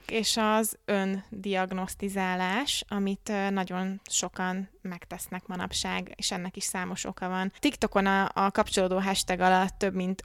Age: 20-39